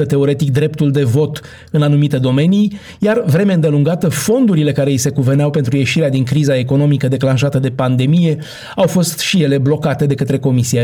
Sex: male